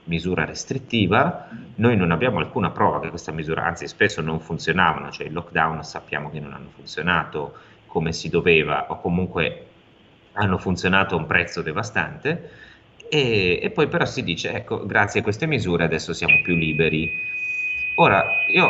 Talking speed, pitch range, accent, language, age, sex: 160 wpm, 85-110 Hz, native, Italian, 30-49, male